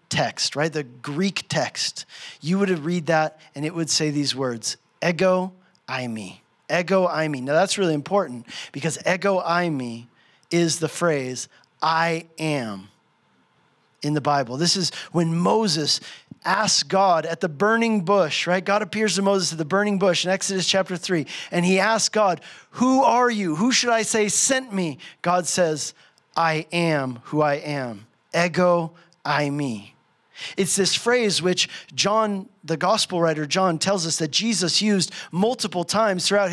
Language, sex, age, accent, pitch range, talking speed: English, male, 40-59, American, 155-195 Hz, 165 wpm